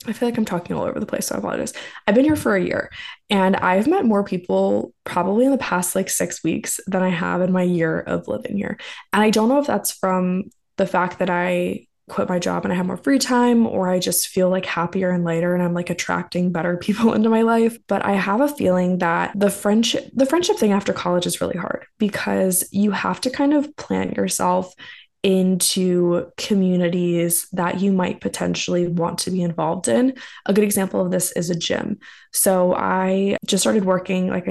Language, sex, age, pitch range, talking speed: English, female, 20-39, 180-215 Hz, 215 wpm